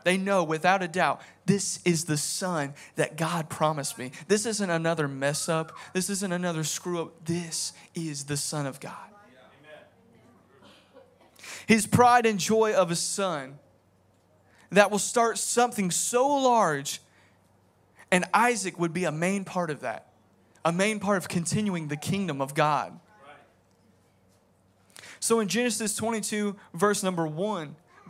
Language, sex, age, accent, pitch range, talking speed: English, male, 20-39, American, 150-200 Hz, 145 wpm